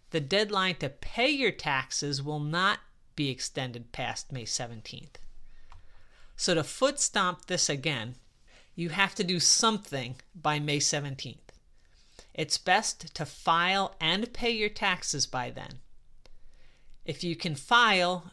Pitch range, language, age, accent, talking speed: 145-180 Hz, English, 40-59, American, 130 wpm